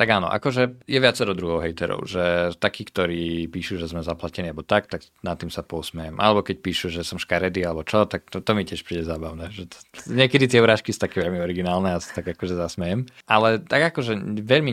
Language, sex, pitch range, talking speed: Slovak, male, 85-95 Hz, 225 wpm